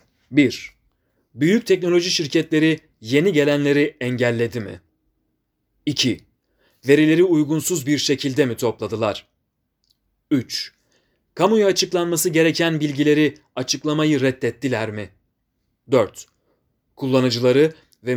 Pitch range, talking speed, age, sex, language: 125-160 Hz, 85 wpm, 30-49, male, Turkish